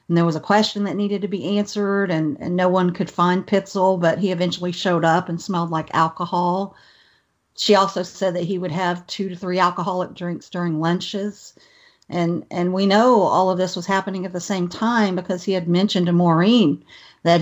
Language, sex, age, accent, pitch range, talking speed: English, female, 50-69, American, 170-200 Hz, 205 wpm